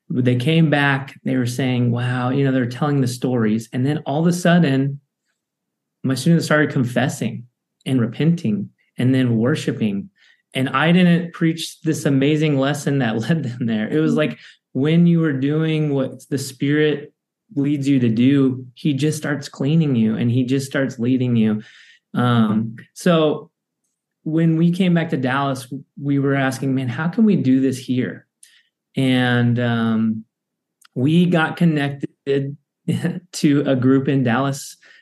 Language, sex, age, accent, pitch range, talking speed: English, male, 30-49, American, 130-160 Hz, 160 wpm